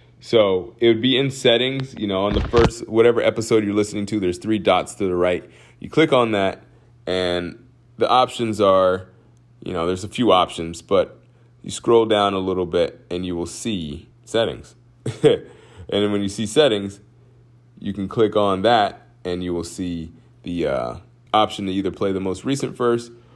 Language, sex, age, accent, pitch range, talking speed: English, male, 30-49, American, 105-135 Hz, 190 wpm